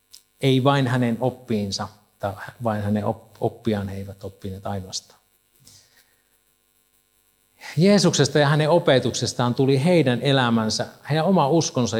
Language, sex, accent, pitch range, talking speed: Finnish, male, native, 110-140 Hz, 110 wpm